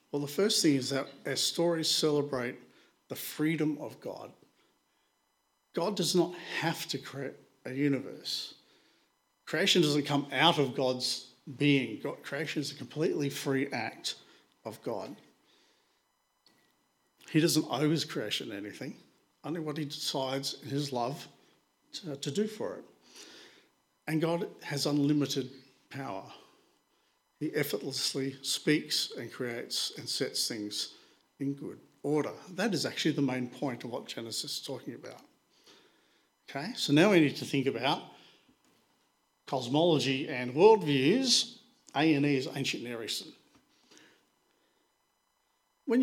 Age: 50-69